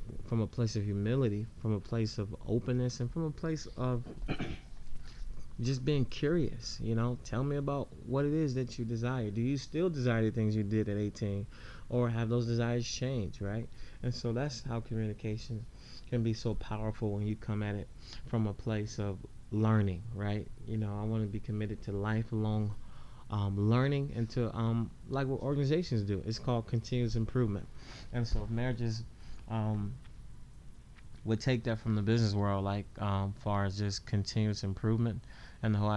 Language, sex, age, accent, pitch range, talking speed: English, male, 20-39, American, 105-120 Hz, 185 wpm